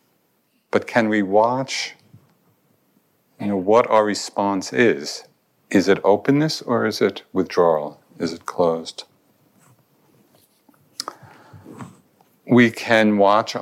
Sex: male